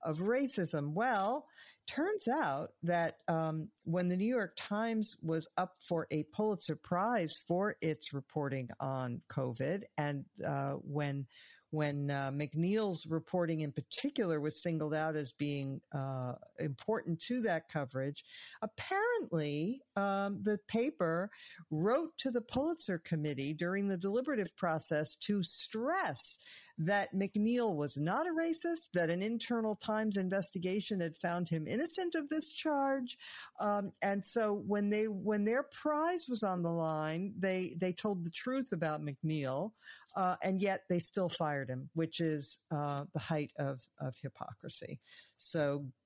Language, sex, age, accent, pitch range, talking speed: English, female, 50-69, American, 150-210 Hz, 145 wpm